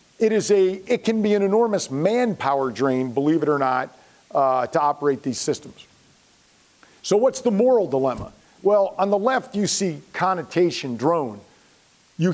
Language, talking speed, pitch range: English, 160 wpm, 160-205 Hz